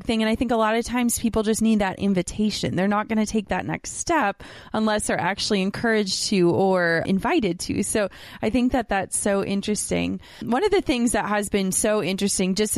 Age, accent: 20-39, American